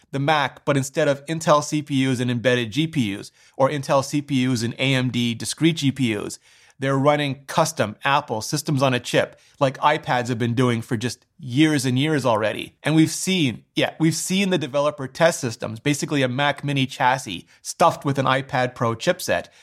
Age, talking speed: 30-49, 175 wpm